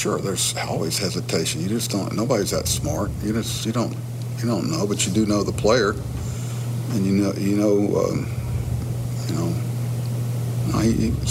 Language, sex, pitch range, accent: English, male, 105-120 Hz, American